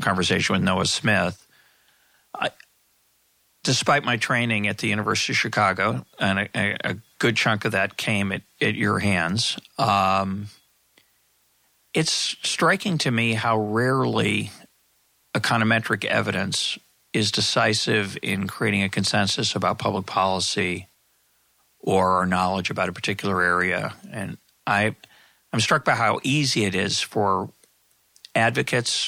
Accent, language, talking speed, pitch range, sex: American, English, 120 wpm, 95-120 Hz, male